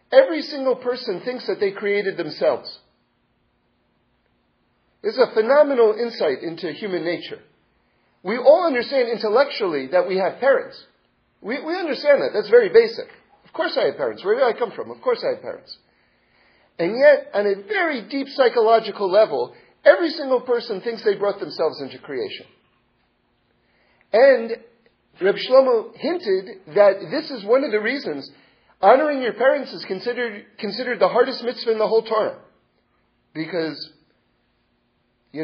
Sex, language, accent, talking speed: male, English, American, 150 wpm